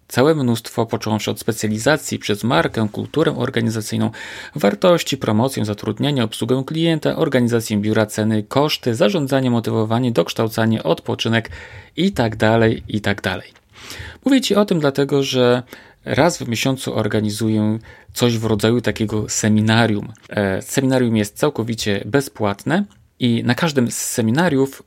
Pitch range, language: 105-130 Hz, Polish